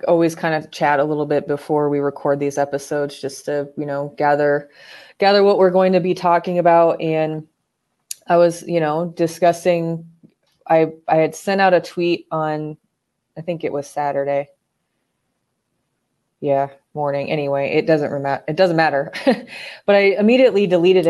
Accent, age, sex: American, 20-39, female